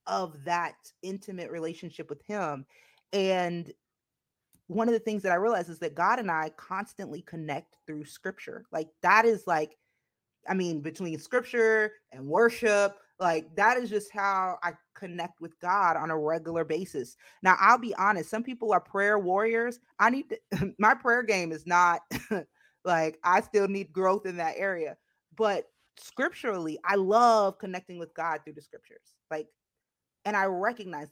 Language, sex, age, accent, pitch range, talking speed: English, female, 30-49, American, 165-210 Hz, 165 wpm